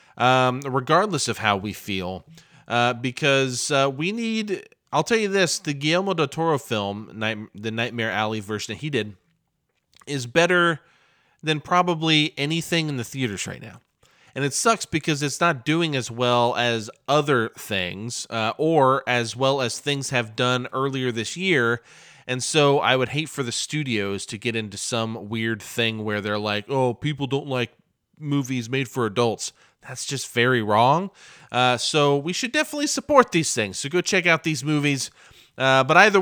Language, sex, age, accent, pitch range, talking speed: English, male, 30-49, American, 120-170 Hz, 175 wpm